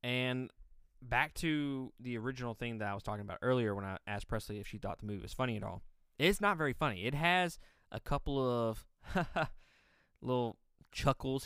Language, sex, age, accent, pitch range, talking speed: English, male, 20-39, American, 105-135 Hz, 190 wpm